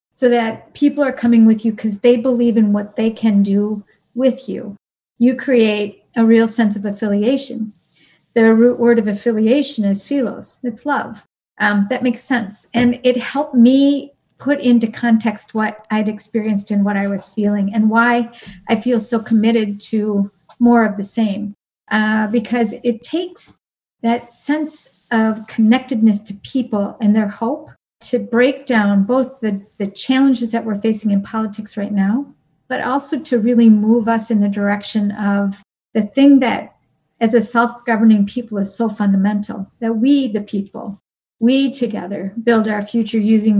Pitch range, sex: 210-240 Hz, female